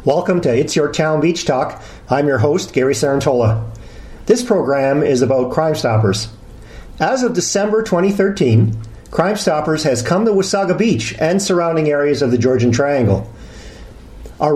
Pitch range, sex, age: 125-185 Hz, male, 50-69